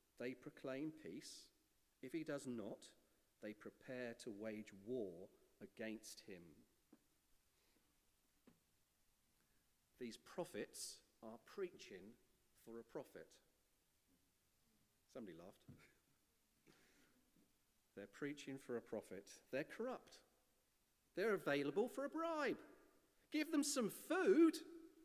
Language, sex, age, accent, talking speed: English, male, 40-59, British, 95 wpm